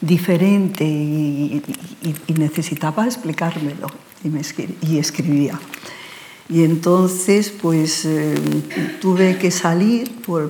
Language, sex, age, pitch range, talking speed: Spanish, female, 60-79, 160-190 Hz, 95 wpm